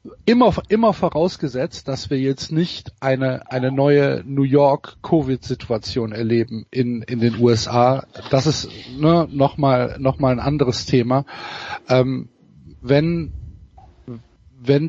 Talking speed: 130 wpm